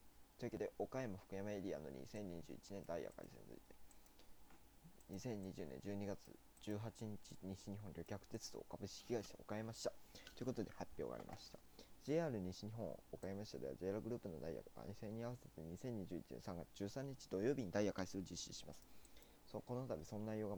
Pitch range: 95-115 Hz